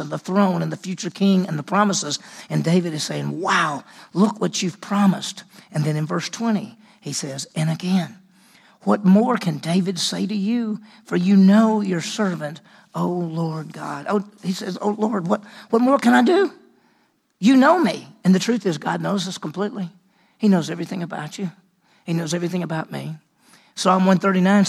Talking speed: 185 wpm